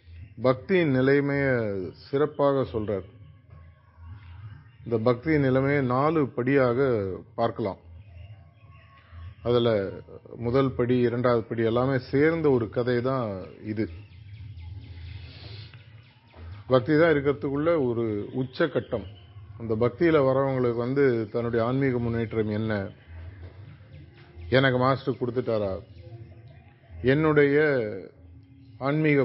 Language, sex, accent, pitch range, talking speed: Tamil, male, native, 105-135 Hz, 80 wpm